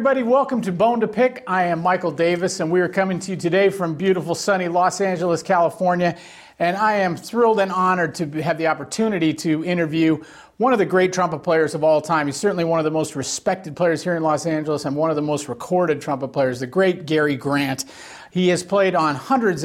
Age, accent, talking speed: 40-59, American, 225 wpm